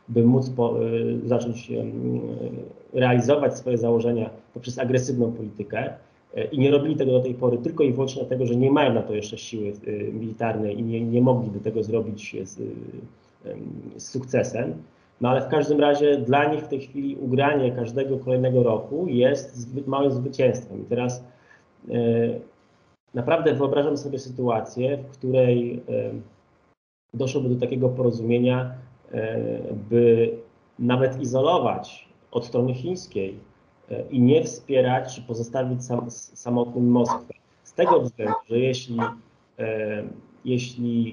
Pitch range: 115-135 Hz